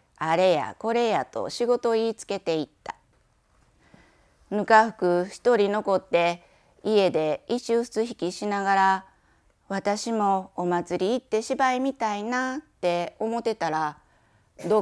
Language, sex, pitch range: Japanese, female, 180-245 Hz